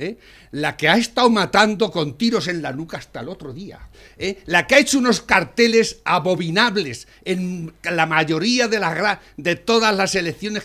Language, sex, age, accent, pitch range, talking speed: Spanish, male, 60-79, Spanish, 160-220 Hz, 185 wpm